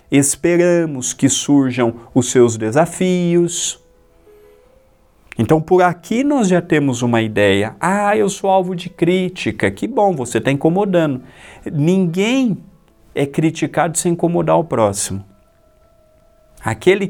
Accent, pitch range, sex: Brazilian, 125-180 Hz, male